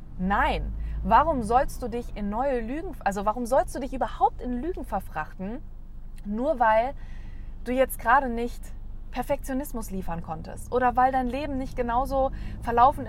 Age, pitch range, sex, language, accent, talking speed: 20-39, 170-245 Hz, female, German, German, 150 wpm